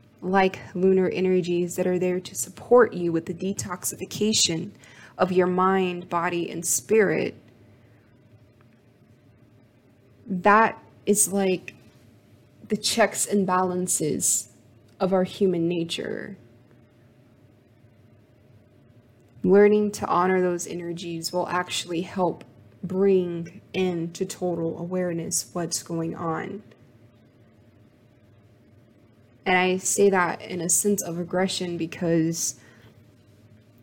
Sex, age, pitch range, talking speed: female, 20-39, 120-185 Hz, 100 wpm